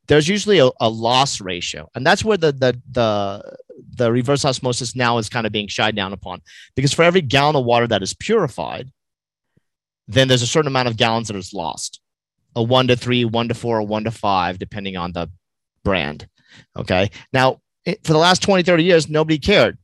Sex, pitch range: male, 115-140 Hz